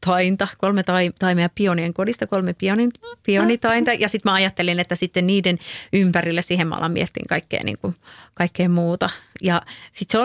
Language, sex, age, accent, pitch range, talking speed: Finnish, female, 30-49, native, 175-200 Hz, 170 wpm